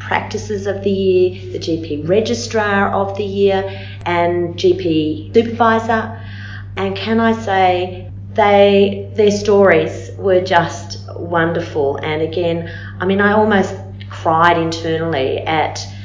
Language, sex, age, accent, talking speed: English, female, 40-59, Australian, 120 wpm